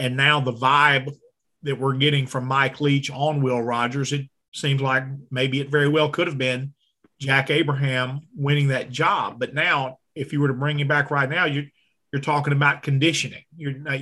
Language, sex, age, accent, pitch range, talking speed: English, male, 40-59, American, 130-145 Hz, 195 wpm